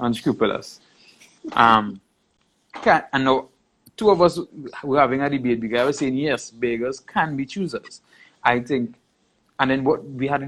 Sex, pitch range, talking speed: male, 120-150 Hz, 160 wpm